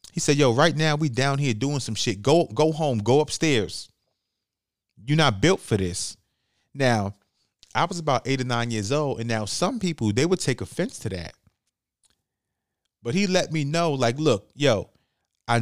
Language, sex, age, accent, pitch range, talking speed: English, male, 30-49, American, 115-150 Hz, 190 wpm